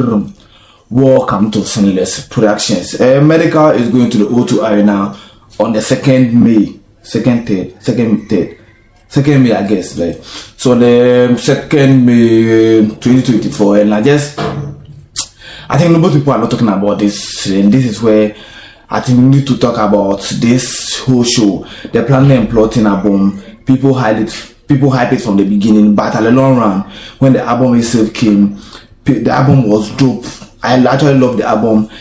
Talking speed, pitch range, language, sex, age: 165 wpm, 105-135 Hz, English, male, 20-39